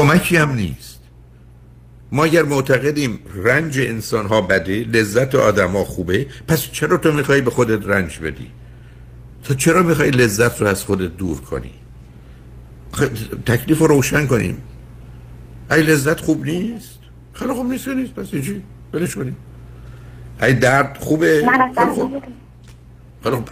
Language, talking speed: Persian, 135 wpm